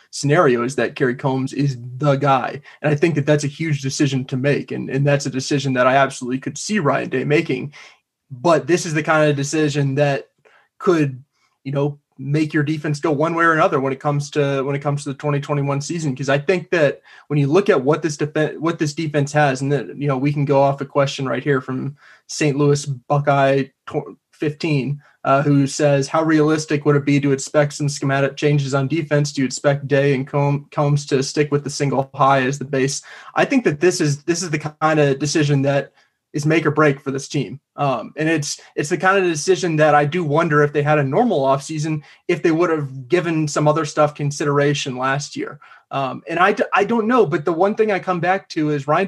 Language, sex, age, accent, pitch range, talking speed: English, male, 20-39, American, 140-155 Hz, 230 wpm